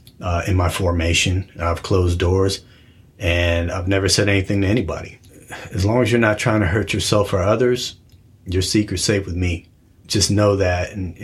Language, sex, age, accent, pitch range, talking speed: English, male, 30-49, American, 95-110 Hz, 180 wpm